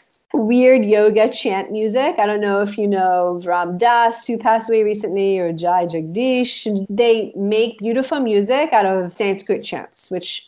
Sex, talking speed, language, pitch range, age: female, 160 wpm, English, 180-225 Hz, 30-49